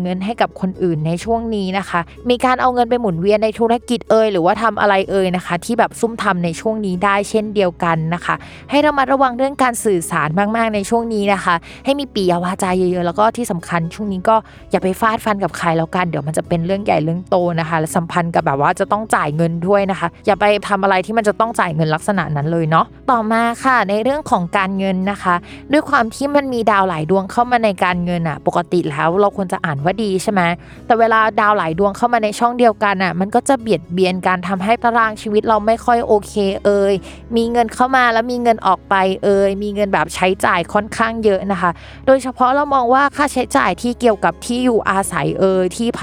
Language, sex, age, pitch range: Thai, female, 20-39, 180-230 Hz